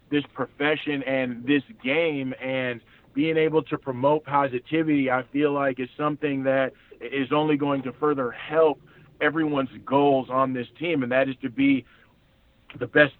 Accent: American